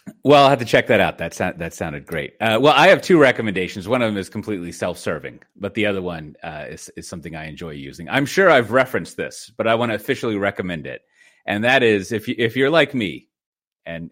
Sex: male